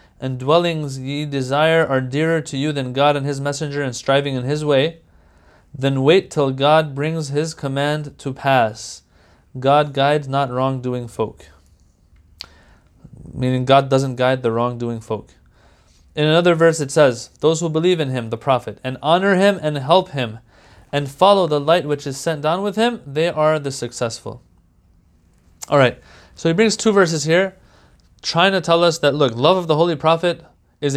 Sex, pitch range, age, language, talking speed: male, 125-165 Hz, 20-39, English, 175 wpm